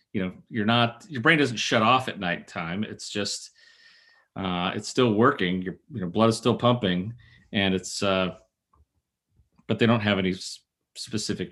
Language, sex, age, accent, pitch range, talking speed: English, male, 30-49, American, 105-140 Hz, 165 wpm